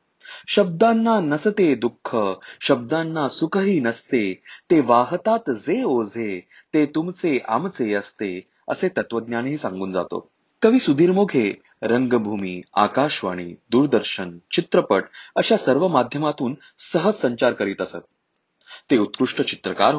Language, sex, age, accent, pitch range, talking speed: Marathi, male, 30-49, native, 110-180 Hz, 105 wpm